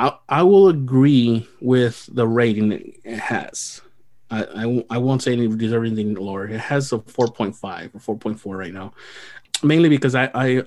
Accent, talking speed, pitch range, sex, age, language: American, 165 wpm, 110-130 Hz, male, 30-49, English